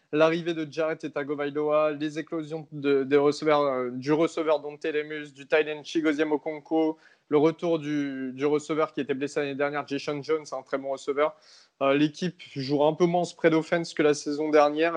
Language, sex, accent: French, male, French